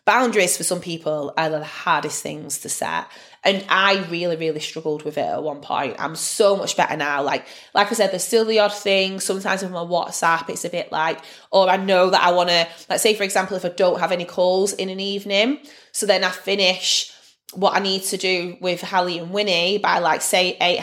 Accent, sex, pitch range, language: British, female, 175-215 Hz, English